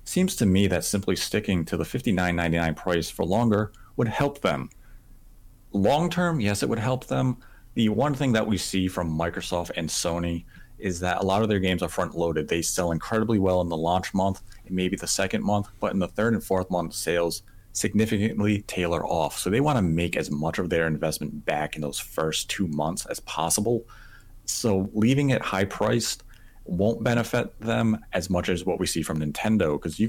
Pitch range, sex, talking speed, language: 85-105 Hz, male, 205 wpm, English